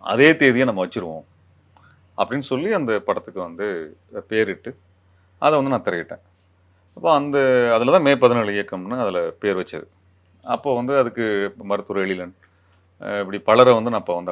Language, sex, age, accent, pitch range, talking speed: Tamil, male, 30-49, native, 90-120 Hz, 145 wpm